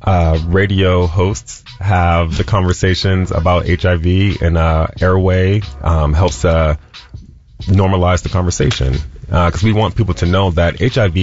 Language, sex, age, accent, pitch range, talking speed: English, male, 30-49, American, 80-95 Hz, 140 wpm